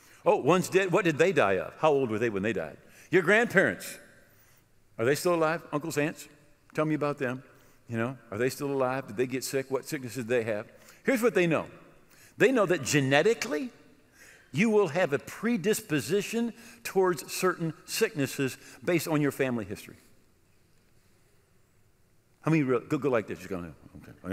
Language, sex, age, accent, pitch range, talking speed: English, male, 50-69, American, 125-185 Hz, 180 wpm